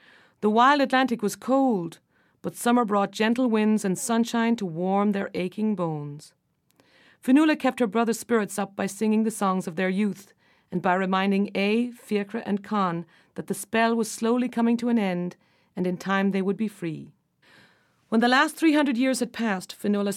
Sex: female